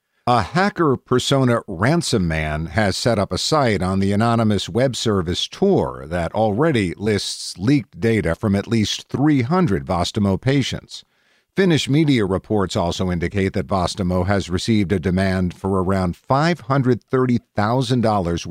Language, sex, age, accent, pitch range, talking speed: English, male, 50-69, American, 95-130 Hz, 135 wpm